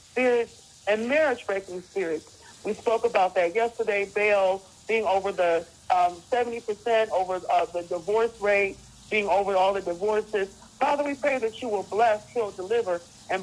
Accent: American